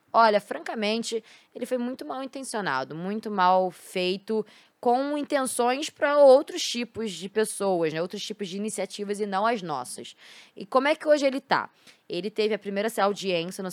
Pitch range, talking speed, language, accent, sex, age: 170-220 Hz, 170 wpm, Portuguese, Brazilian, female, 10-29